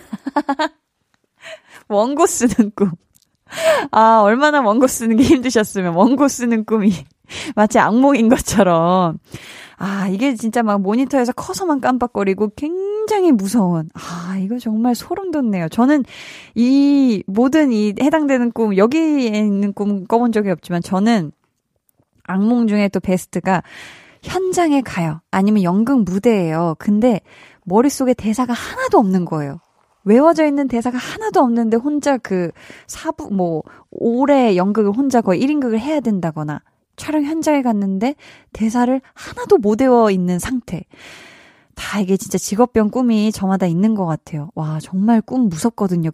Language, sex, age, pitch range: Korean, female, 20-39, 190-270 Hz